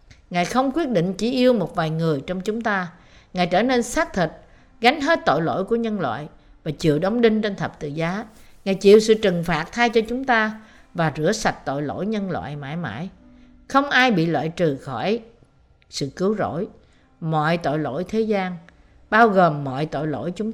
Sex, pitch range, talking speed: female, 155-220 Hz, 205 wpm